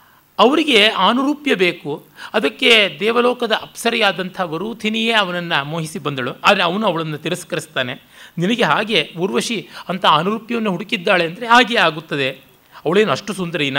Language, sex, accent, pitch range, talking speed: Kannada, male, native, 145-205 Hz, 120 wpm